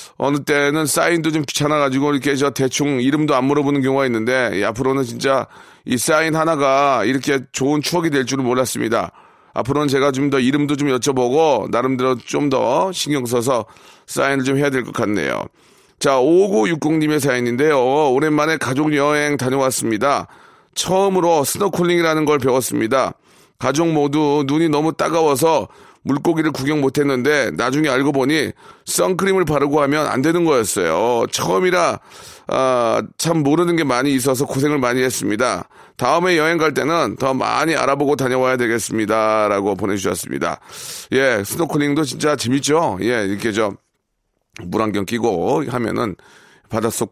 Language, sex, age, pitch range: Korean, male, 30-49, 125-150 Hz